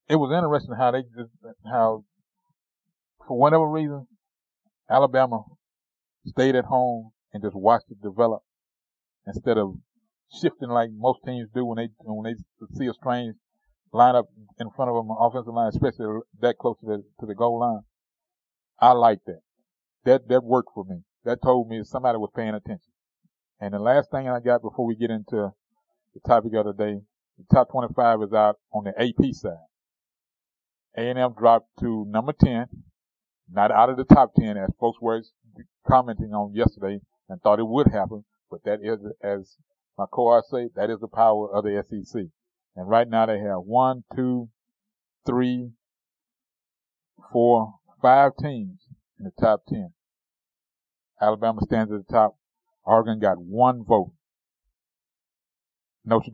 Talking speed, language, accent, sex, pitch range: 160 wpm, English, American, male, 105-130 Hz